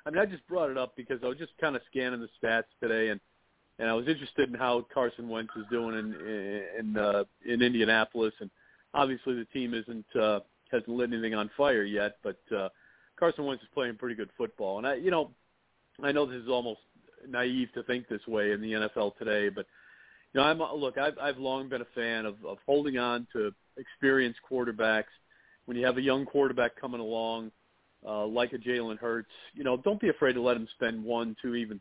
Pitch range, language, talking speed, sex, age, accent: 110-130 Hz, English, 215 wpm, male, 40-59, American